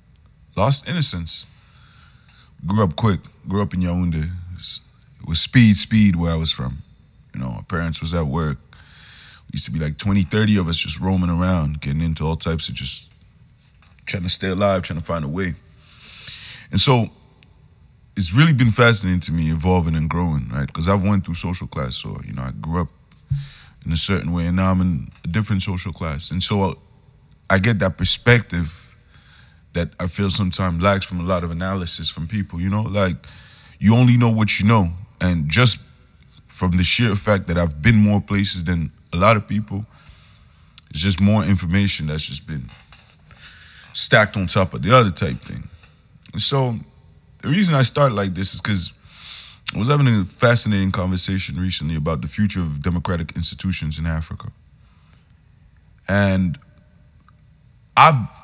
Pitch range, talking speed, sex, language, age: 85-105 Hz, 180 wpm, male, English, 20-39